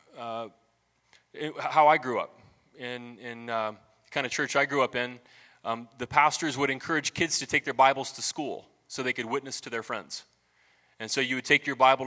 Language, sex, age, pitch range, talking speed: English, male, 20-39, 130-155 Hz, 215 wpm